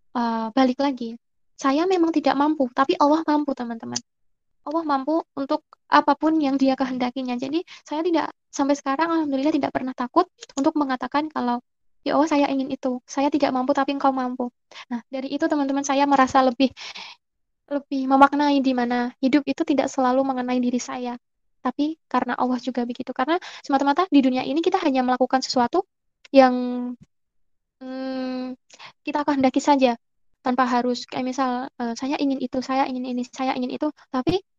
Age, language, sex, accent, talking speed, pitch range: 20-39, Indonesian, female, native, 160 wpm, 255-295 Hz